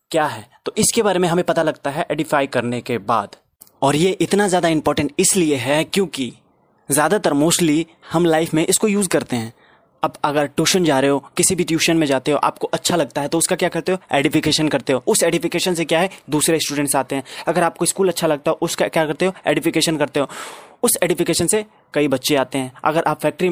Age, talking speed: 20-39, 220 wpm